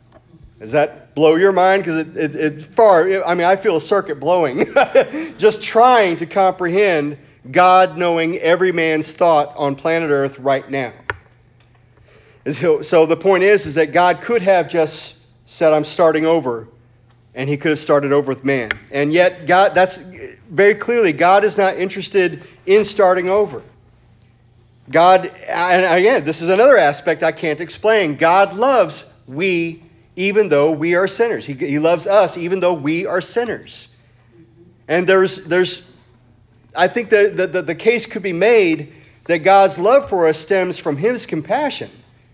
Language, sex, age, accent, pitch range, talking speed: English, male, 40-59, American, 140-190 Hz, 165 wpm